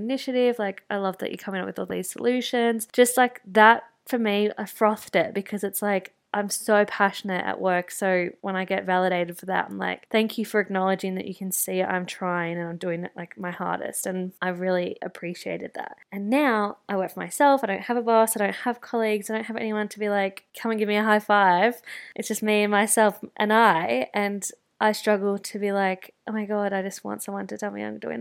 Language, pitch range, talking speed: English, 195-220 Hz, 240 wpm